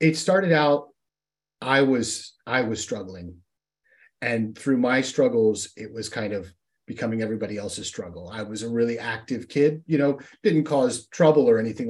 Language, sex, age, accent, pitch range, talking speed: English, male, 30-49, American, 110-150 Hz, 165 wpm